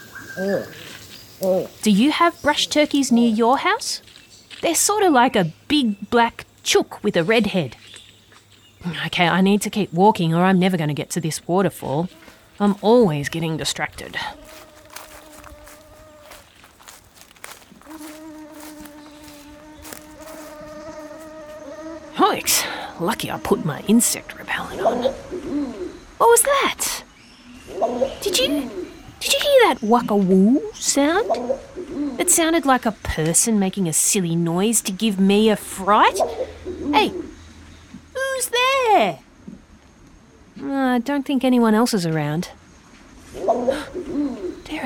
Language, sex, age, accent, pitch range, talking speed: English, female, 30-49, Australian, 190-310 Hz, 115 wpm